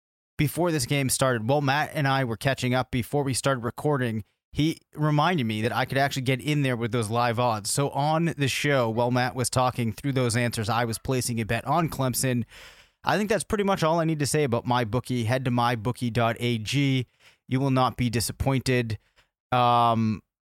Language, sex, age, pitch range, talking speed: English, male, 20-39, 120-140 Hz, 200 wpm